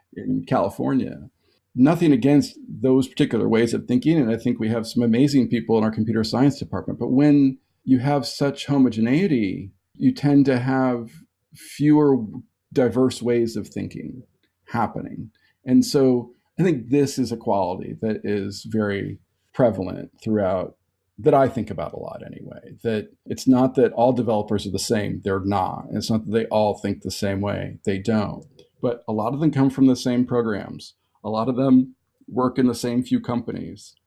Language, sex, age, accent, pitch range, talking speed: English, male, 50-69, American, 115-140 Hz, 175 wpm